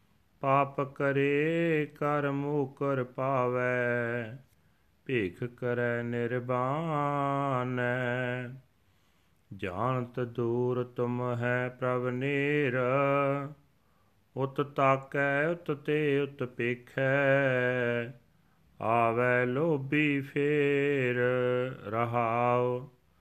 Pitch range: 125-140 Hz